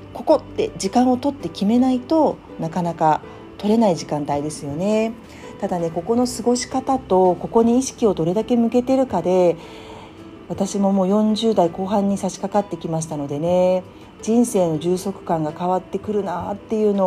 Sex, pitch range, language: female, 165-220 Hz, Japanese